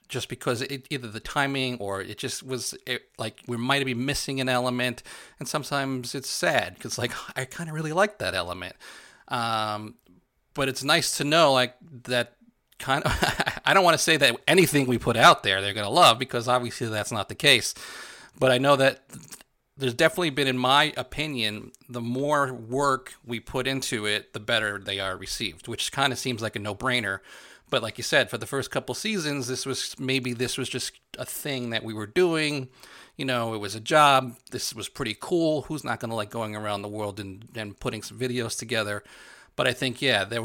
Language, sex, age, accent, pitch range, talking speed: English, male, 30-49, American, 105-130 Hz, 210 wpm